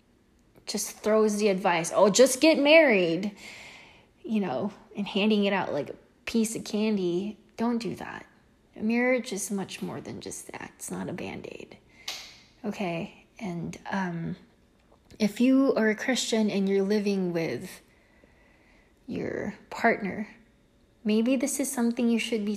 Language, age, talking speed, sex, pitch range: English, 20-39, 145 wpm, female, 180-230 Hz